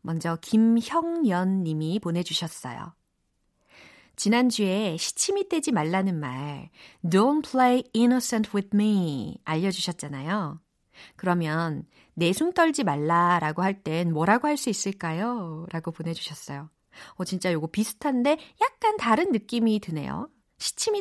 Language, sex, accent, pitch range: Korean, female, native, 170-240 Hz